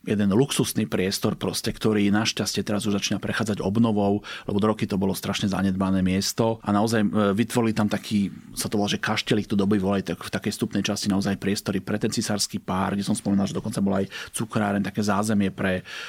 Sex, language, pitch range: male, Slovak, 105-120 Hz